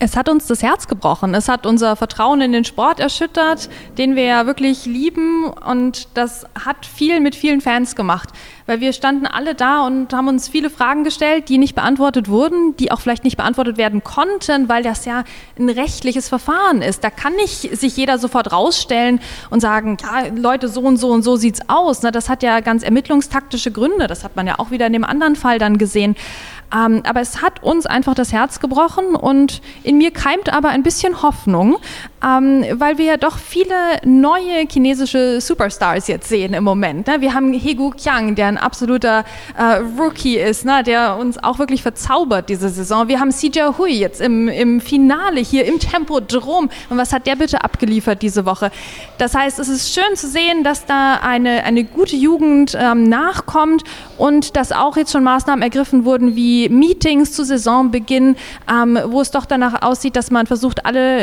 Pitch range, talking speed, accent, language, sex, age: 235-290 Hz, 195 wpm, German, German, female, 20-39